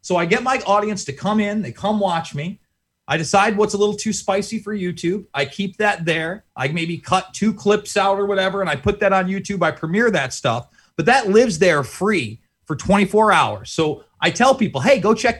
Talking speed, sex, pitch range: 225 wpm, male, 155-210 Hz